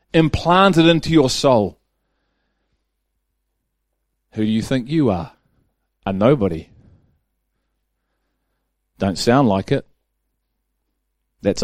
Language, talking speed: English, 90 wpm